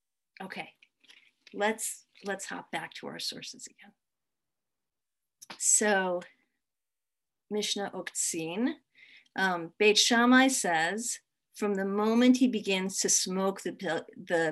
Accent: American